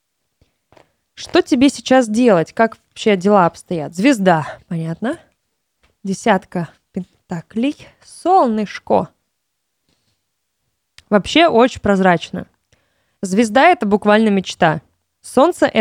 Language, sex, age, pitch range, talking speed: Russian, female, 20-39, 190-245 Hz, 85 wpm